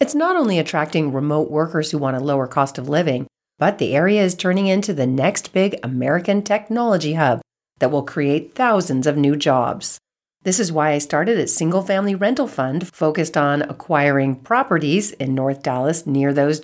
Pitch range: 140-195 Hz